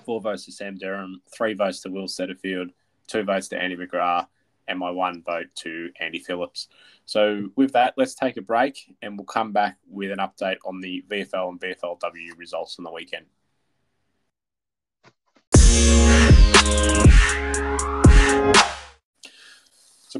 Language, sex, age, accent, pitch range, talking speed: English, male, 20-39, Australian, 90-115 Hz, 135 wpm